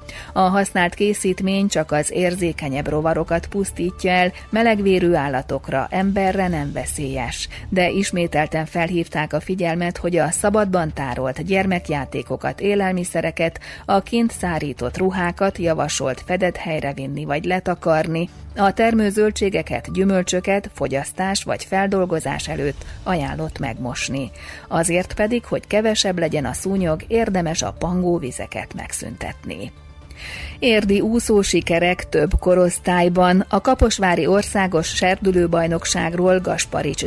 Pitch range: 160-195 Hz